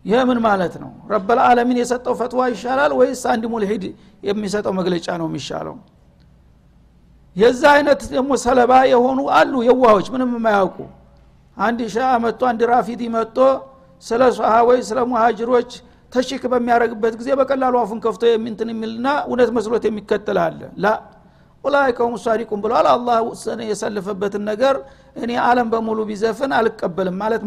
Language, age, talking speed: Amharic, 60-79, 85 wpm